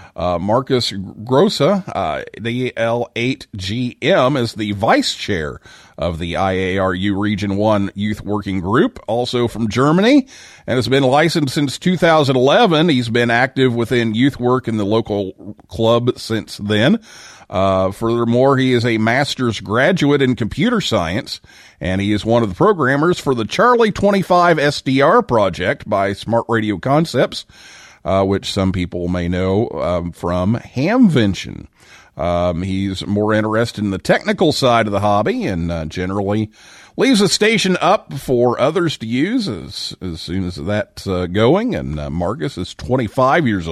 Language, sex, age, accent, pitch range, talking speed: English, male, 40-59, American, 100-140 Hz, 150 wpm